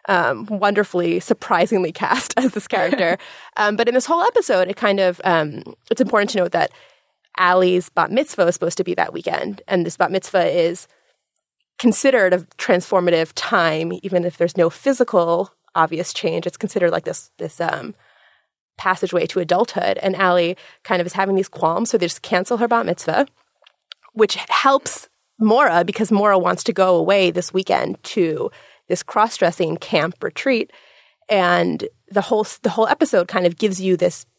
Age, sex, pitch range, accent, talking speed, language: 20-39, female, 175-230 Hz, American, 170 wpm, English